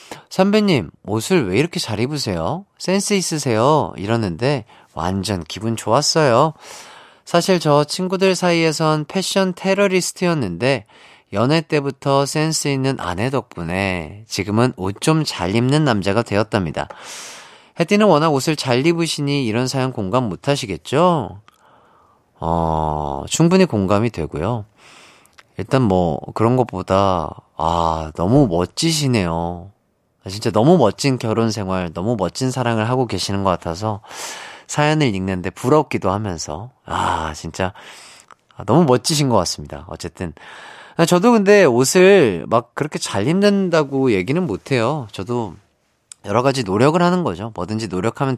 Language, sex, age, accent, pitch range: Korean, male, 40-59, native, 95-150 Hz